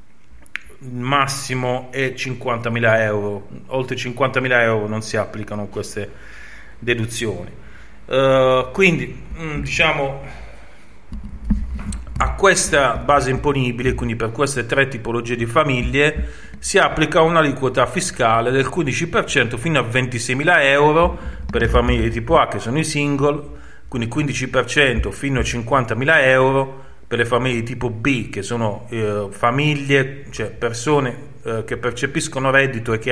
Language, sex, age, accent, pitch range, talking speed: Italian, male, 30-49, native, 115-140 Hz, 125 wpm